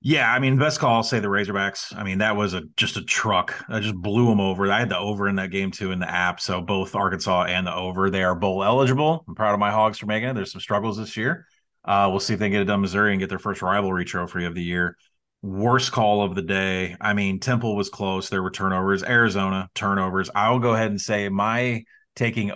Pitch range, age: 95-120 Hz, 30-49